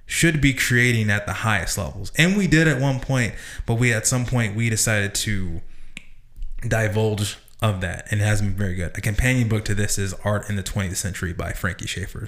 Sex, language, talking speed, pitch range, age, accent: male, English, 215 wpm, 100-115 Hz, 20-39, American